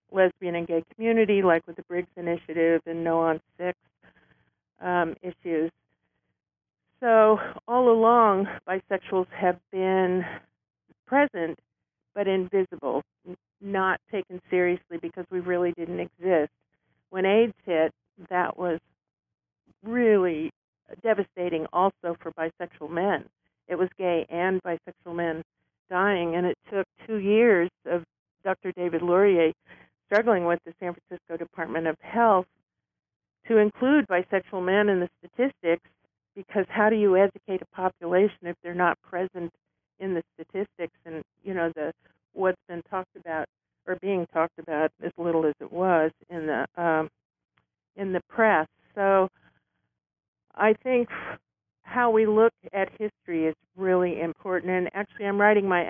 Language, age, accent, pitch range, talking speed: English, 50-69, American, 170-195 Hz, 135 wpm